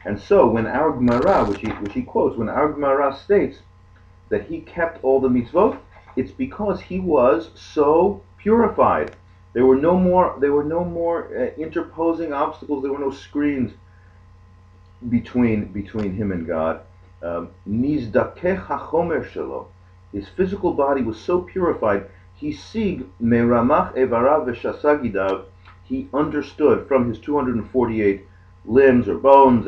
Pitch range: 95-140 Hz